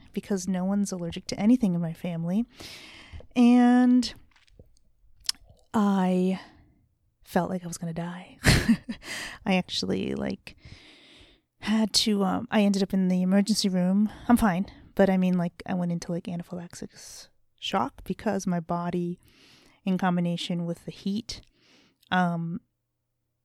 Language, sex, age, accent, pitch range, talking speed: English, female, 30-49, American, 175-200 Hz, 135 wpm